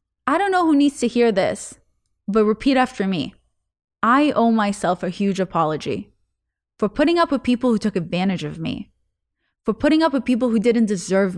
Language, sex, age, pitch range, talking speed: English, female, 20-39, 180-245 Hz, 190 wpm